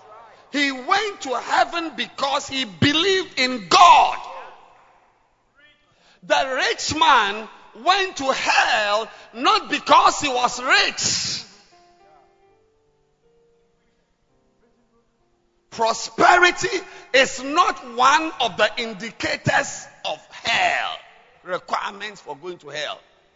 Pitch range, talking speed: 230-365 Hz, 85 wpm